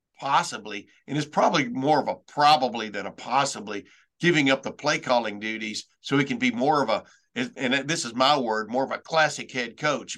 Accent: American